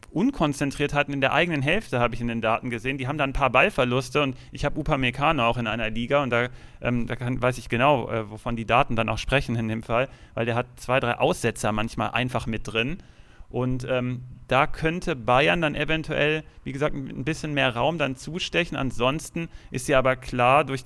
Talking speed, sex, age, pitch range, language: 215 wpm, male, 40-59, 120-150 Hz, German